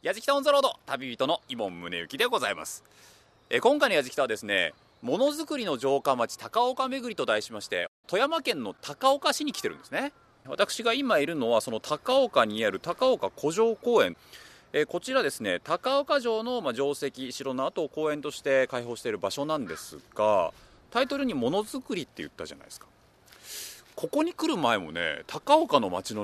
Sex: male